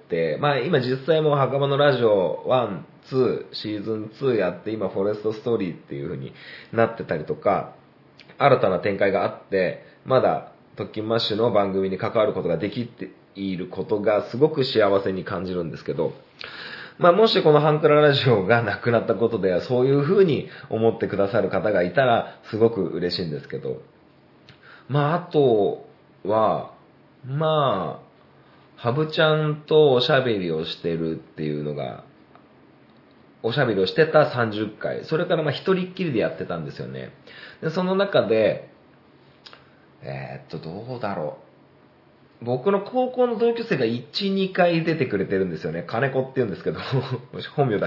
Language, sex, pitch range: Japanese, male, 100-155 Hz